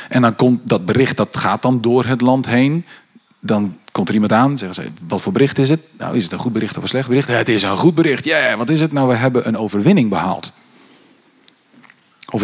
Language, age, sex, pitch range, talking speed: Dutch, 40-59, male, 115-140 Hz, 240 wpm